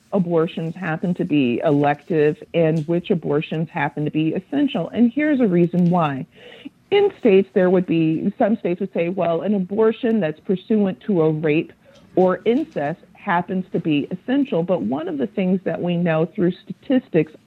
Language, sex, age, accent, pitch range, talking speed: English, female, 50-69, American, 160-210 Hz, 170 wpm